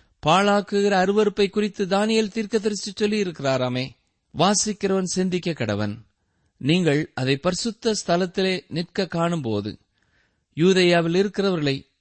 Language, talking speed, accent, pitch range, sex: Tamil, 85 wpm, native, 120-195 Hz, male